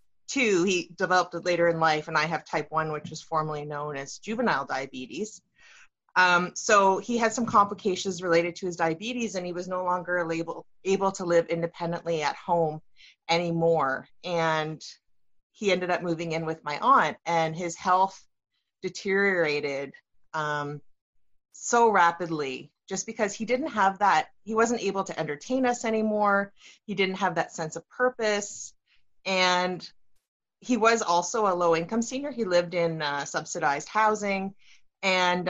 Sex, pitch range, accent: female, 165-200 Hz, American